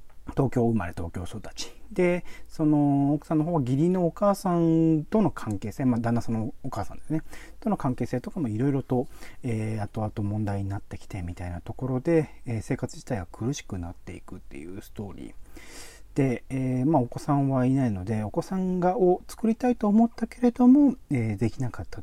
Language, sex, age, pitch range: Japanese, male, 40-59, 105-175 Hz